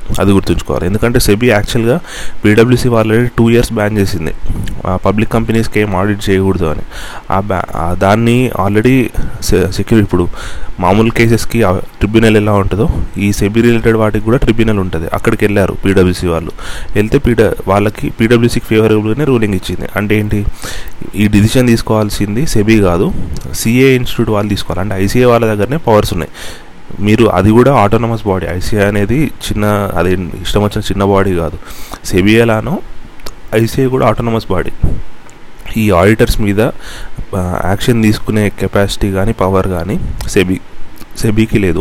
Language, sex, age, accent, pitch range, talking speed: Telugu, male, 30-49, native, 95-115 Hz, 130 wpm